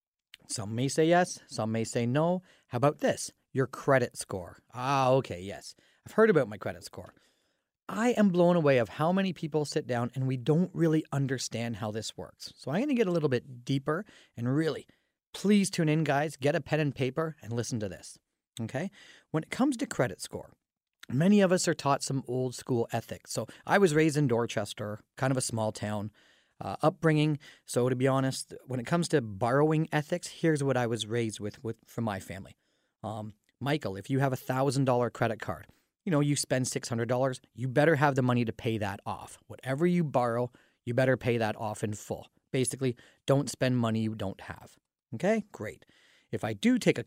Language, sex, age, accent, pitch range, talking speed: English, male, 30-49, American, 115-160 Hz, 205 wpm